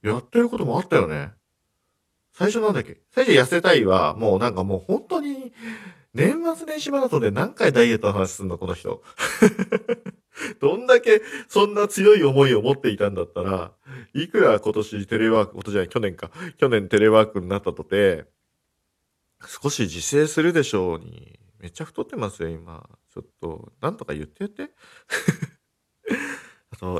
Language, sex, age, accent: Japanese, male, 50-69, native